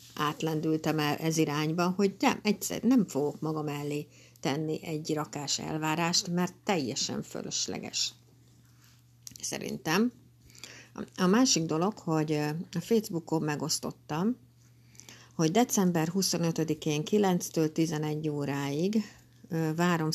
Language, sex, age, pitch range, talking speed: Hungarian, female, 60-79, 145-170 Hz, 100 wpm